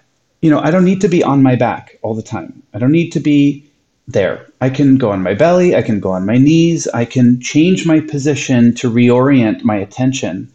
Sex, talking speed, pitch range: male, 230 wpm, 120-150 Hz